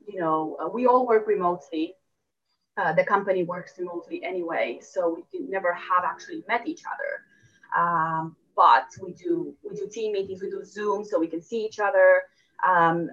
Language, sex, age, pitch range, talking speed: English, female, 20-39, 170-275 Hz, 180 wpm